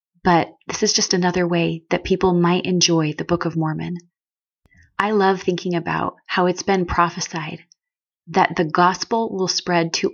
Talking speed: 165 wpm